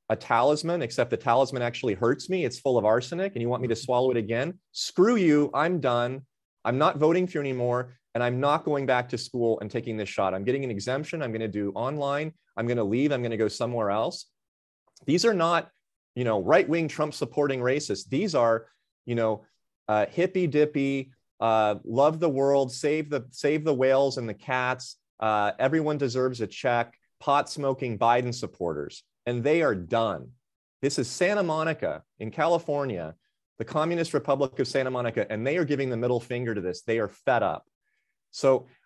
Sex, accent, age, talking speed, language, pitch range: male, American, 30-49, 200 wpm, English, 115-145 Hz